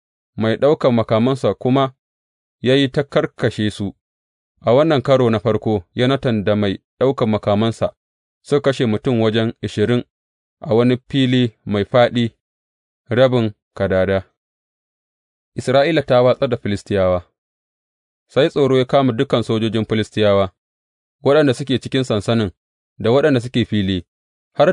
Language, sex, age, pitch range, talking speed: English, male, 30-49, 95-125 Hz, 115 wpm